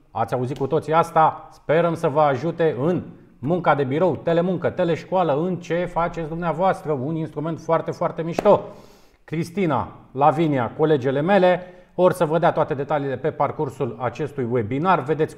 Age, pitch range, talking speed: 30-49, 140-170 Hz, 150 wpm